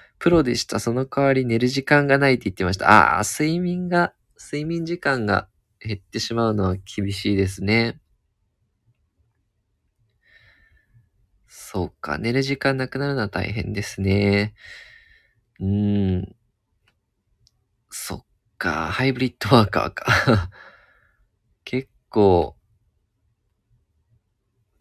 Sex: male